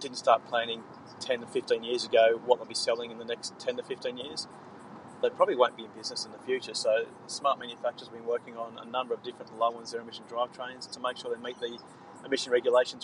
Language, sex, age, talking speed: English, male, 30-49, 245 wpm